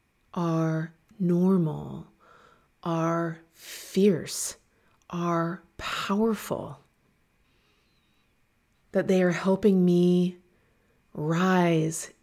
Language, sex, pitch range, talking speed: English, female, 165-195 Hz, 60 wpm